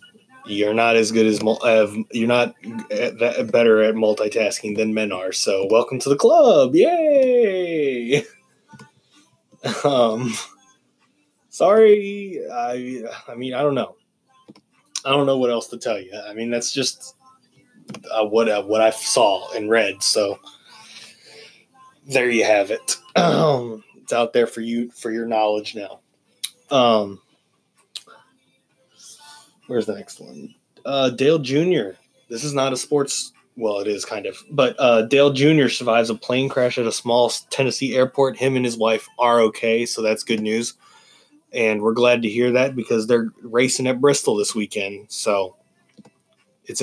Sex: male